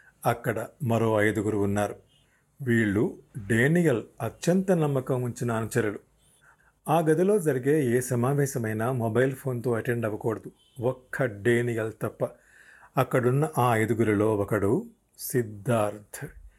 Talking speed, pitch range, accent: 100 wpm, 110-135 Hz, native